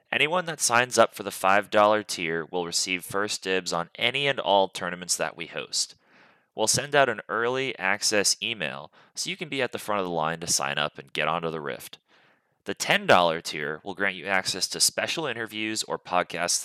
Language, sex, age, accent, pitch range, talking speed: English, male, 20-39, American, 85-110 Hz, 205 wpm